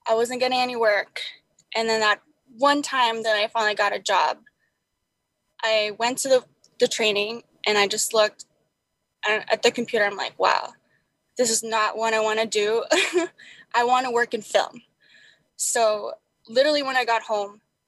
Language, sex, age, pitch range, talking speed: English, female, 10-29, 220-275 Hz, 175 wpm